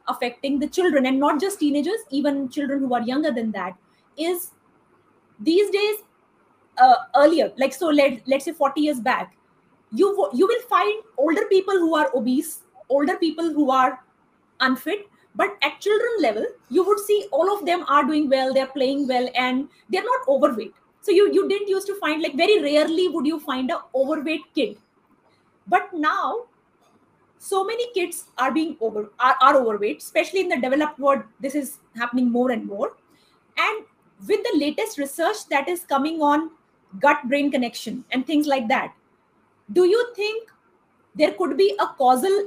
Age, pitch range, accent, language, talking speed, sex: 20-39, 270-360 Hz, native, Hindi, 175 wpm, female